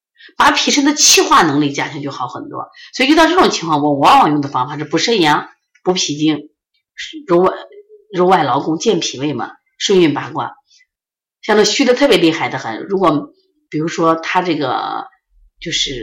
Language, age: Chinese, 30-49